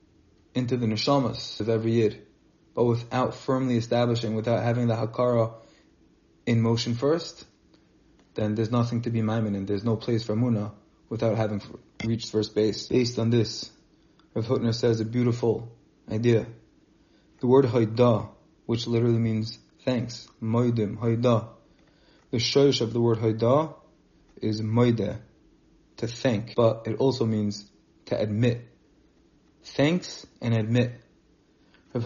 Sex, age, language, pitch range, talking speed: male, 20-39, English, 115-125 Hz, 135 wpm